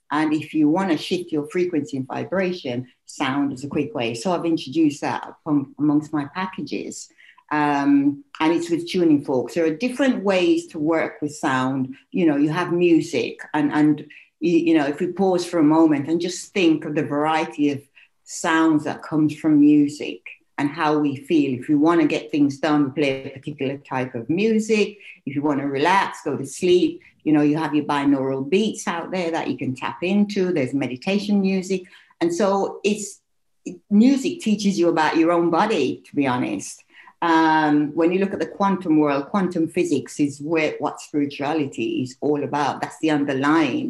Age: 60-79